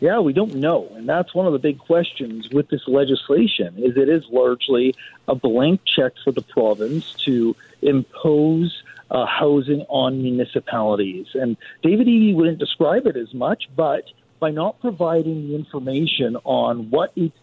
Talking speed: 160 wpm